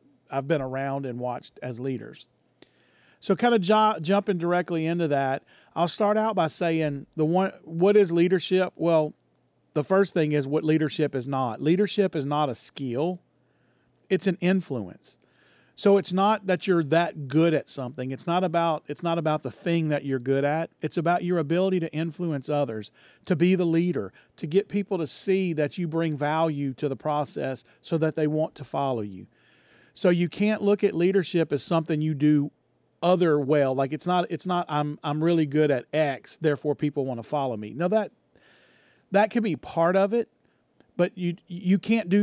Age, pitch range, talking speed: 40-59, 140-180 Hz, 190 wpm